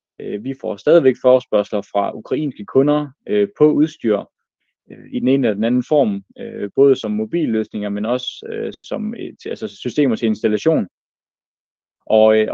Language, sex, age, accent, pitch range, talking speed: Danish, male, 20-39, native, 110-140 Hz, 160 wpm